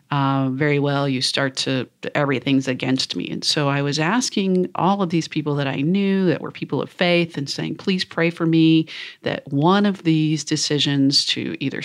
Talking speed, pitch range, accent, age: 195 wpm, 140-170 Hz, American, 40-59